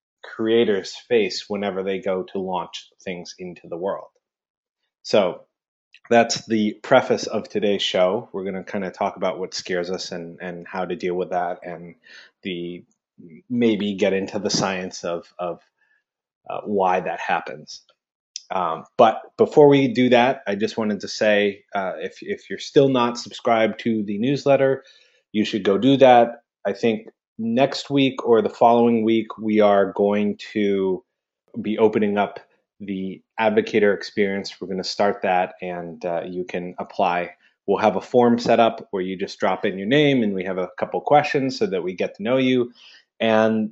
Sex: male